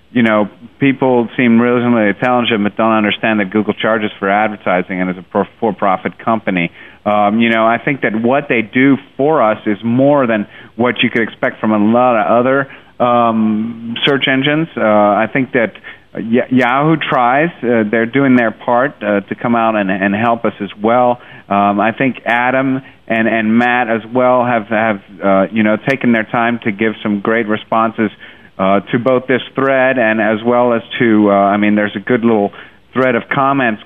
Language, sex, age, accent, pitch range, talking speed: English, male, 40-59, American, 105-125 Hz, 195 wpm